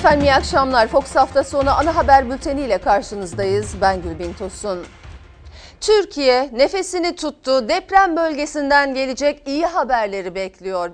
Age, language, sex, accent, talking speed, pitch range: 40-59, Turkish, female, native, 125 wpm, 225-320 Hz